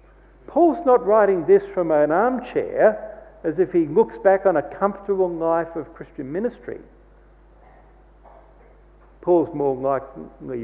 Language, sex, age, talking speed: English, male, 60-79, 125 wpm